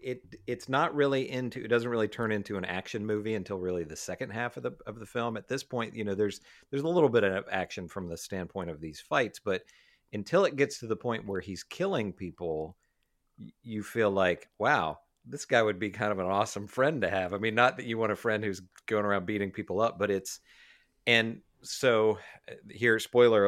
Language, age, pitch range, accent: English, 50-69, 95-115 Hz, American